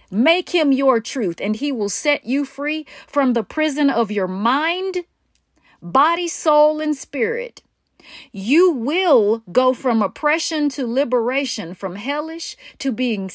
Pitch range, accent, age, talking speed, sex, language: 235-305 Hz, American, 40-59, 140 wpm, female, English